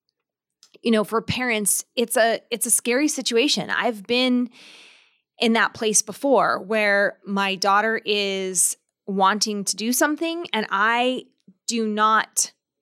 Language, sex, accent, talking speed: English, female, American, 130 wpm